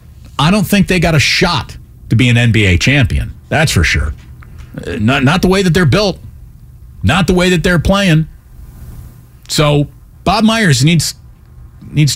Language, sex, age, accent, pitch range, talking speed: English, male, 40-59, American, 95-155 Hz, 165 wpm